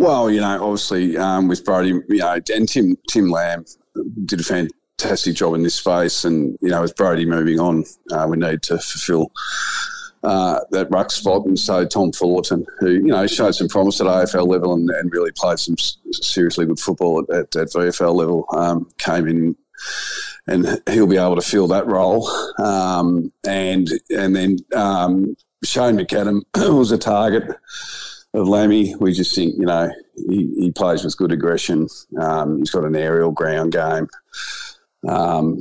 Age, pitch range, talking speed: 40-59, 85-105 Hz, 170 wpm